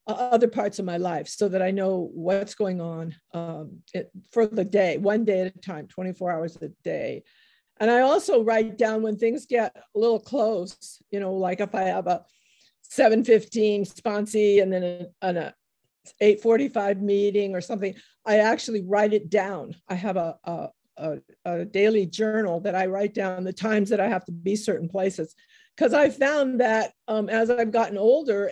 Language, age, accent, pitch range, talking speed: English, 50-69, American, 185-225 Hz, 185 wpm